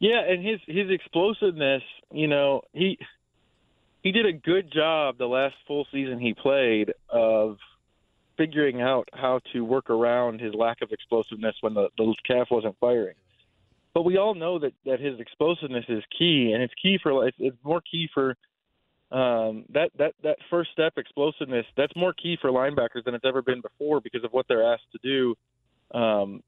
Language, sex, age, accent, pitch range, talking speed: English, male, 30-49, American, 120-155 Hz, 180 wpm